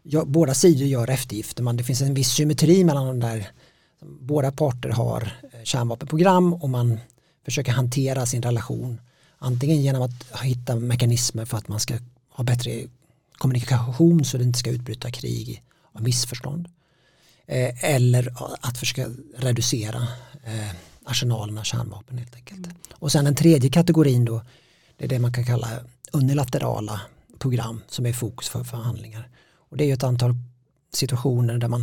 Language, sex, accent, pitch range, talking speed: Swedish, male, Norwegian, 120-140 Hz, 155 wpm